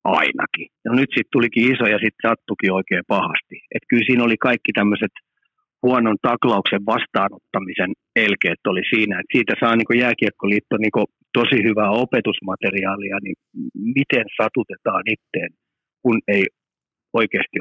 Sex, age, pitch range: male, 50-69, 110-150 Hz